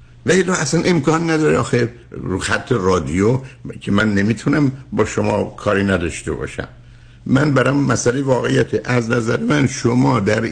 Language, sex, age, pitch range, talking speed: Persian, male, 60-79, 100-130 Hz, 145 wpm